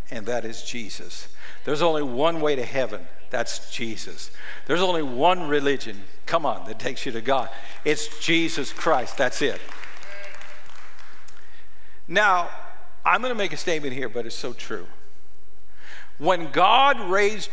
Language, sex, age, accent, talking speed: English, male, 60-79, American, 145 wpm